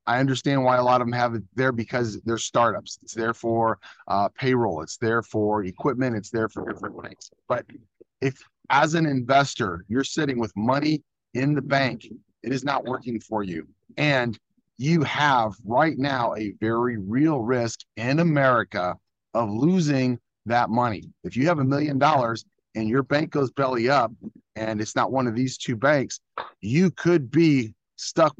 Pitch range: 110-135 Hz